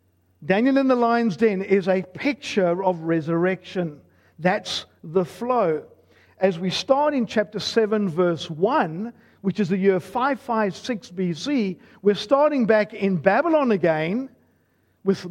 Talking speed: 135 wpm